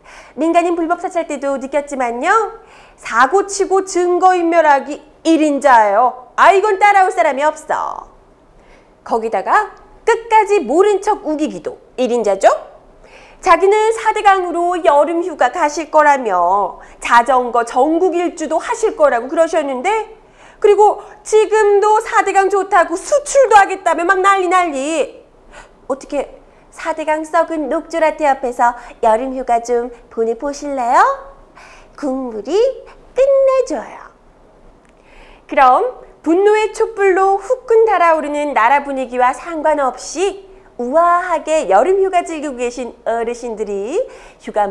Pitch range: 270-390 Hz